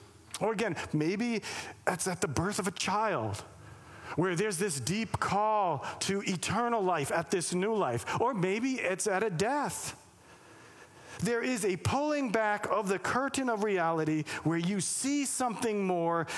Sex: male